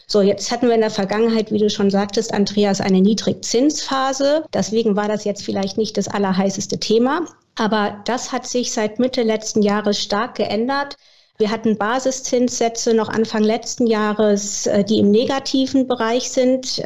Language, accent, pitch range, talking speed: German, German, 205-235 Hz, 160 wpm